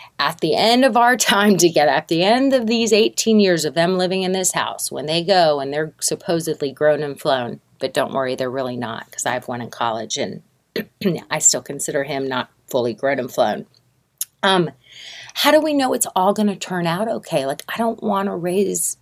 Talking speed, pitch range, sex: 220 wpm, 155-210 Hz, female